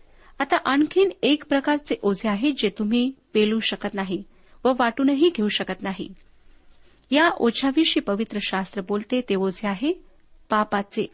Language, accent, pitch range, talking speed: Marathi, native, 205-275 Hz, 125 wpm